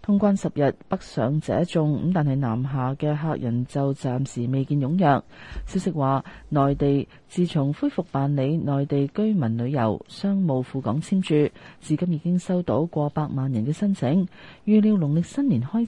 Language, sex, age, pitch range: Chinese, female, 30-49, 135-180 Hz